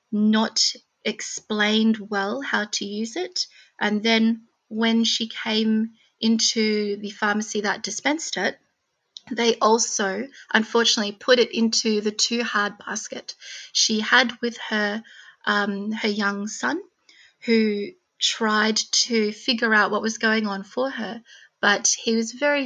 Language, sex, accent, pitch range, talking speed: English, female, Australian, 205-230 Hz, 135 wpm